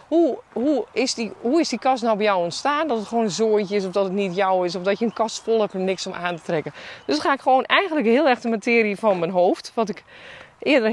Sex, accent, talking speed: female, Dutch, 280 wpm